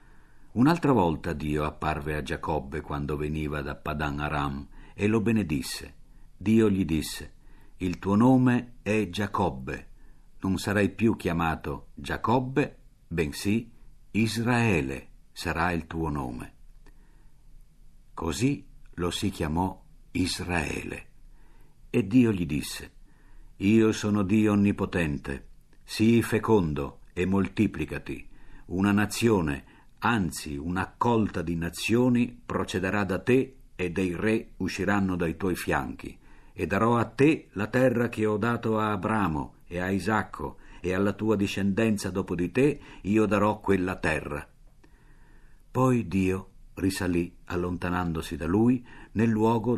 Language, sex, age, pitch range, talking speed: Italian, male, 50-69, 85-110 Hz, 120 wpm